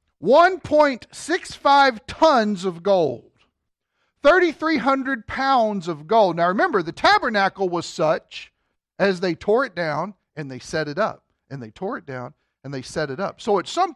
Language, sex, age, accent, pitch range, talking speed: English, male, 40-59, American, 190-285 Hz, 160 wpm